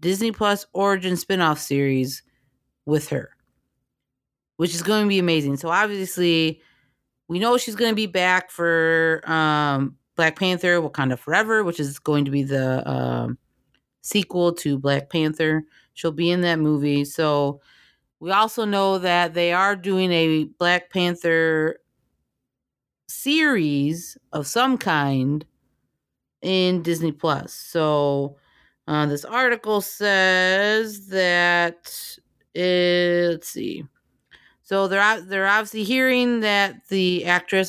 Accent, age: American, 30-49